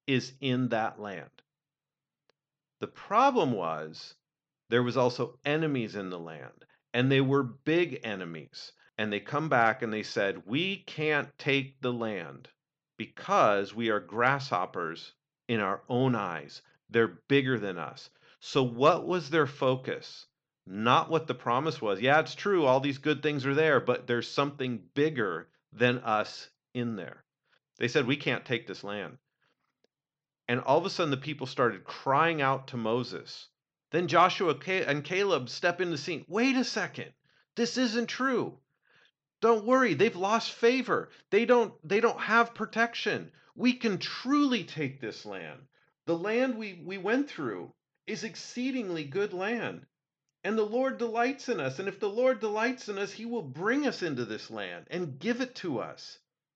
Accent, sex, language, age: American, male, English, 40-59